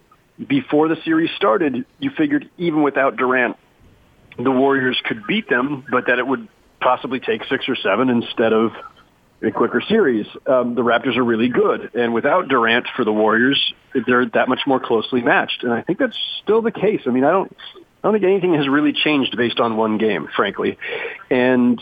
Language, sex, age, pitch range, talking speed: English, male, 40-59, 125-155 Hz, 195 wpm